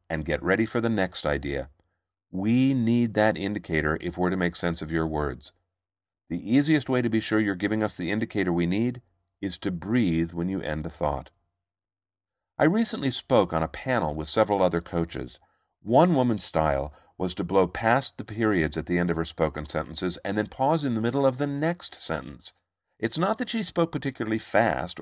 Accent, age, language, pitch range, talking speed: American, 50-69, English, 85-110 Hz, 200 wpm